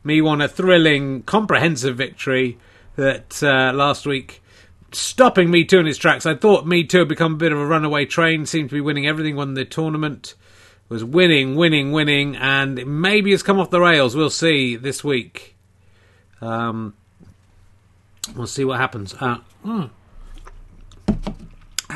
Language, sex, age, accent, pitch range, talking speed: English, male, 40-59, British, 115-150 Hz, 160 wpm